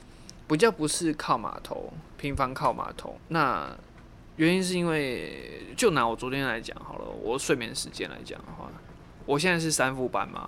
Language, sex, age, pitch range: Chinese, male, 20-39, 125-155 Hz